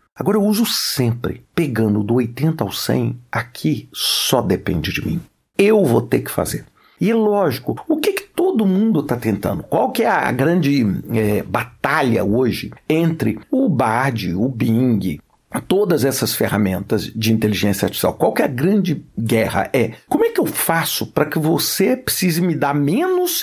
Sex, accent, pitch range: male, Brazilian, 115-190 Hz